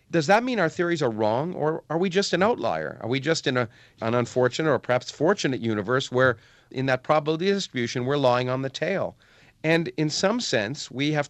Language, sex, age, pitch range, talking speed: English, male, 40-59, 110-140 Hz, 210 wpm